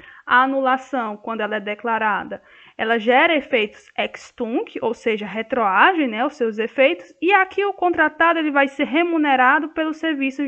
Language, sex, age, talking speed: Portuguese, female, 10-29, 160 wpm